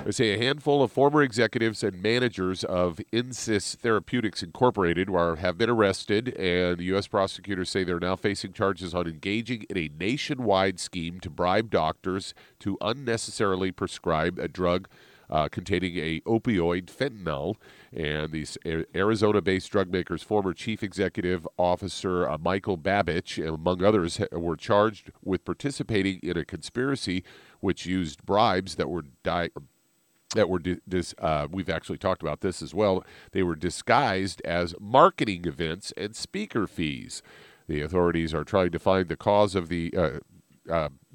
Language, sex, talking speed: English, male, 145 wpm